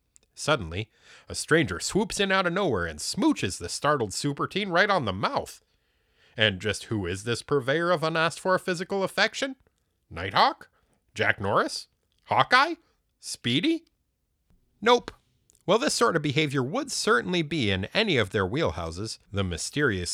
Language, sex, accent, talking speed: English, male, American, 145 wpm